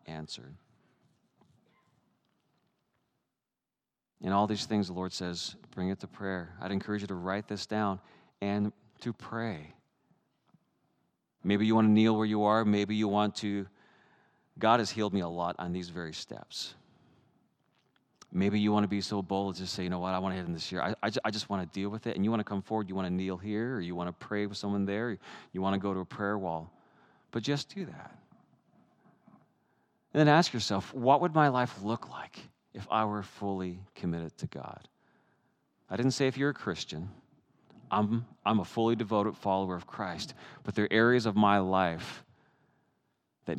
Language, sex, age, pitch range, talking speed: English, male, 40-59, 95-110 Hz, 200 wpm